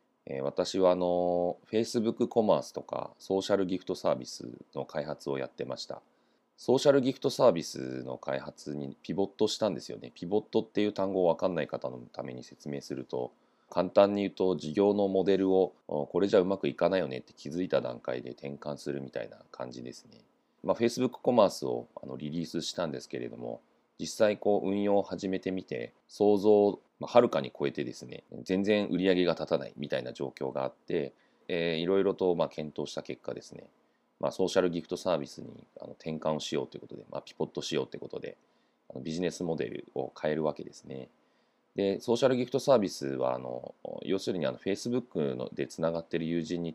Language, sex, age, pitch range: Japanese, male, 30-49, 70-100 Hz